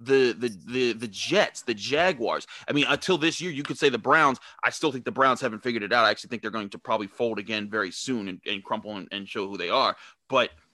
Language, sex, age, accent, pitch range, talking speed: English, male, 30-49, American, 120-180 Hz, 265 wpm